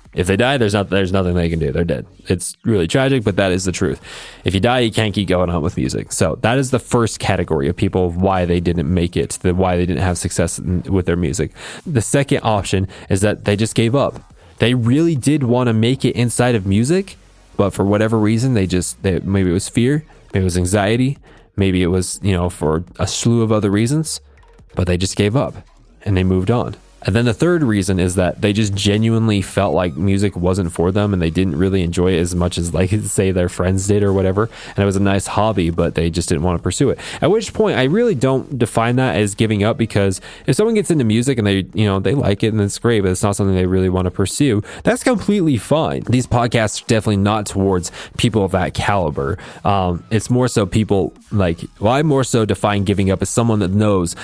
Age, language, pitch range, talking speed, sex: 20-39, English, 90-115 Hz, 240 wpm, male